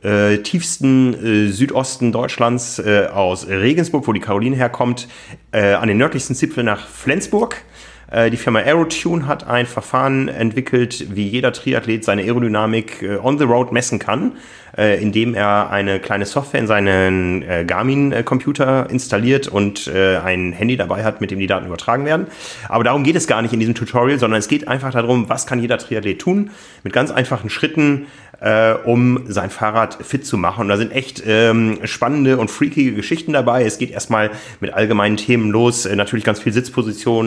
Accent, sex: German, male